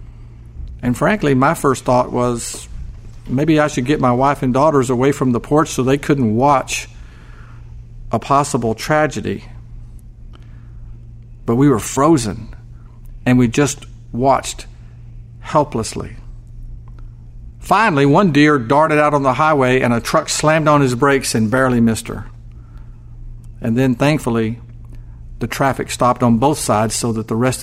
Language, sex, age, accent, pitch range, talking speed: English, male, 50-69, American, 115-135 Hz, 145 wpm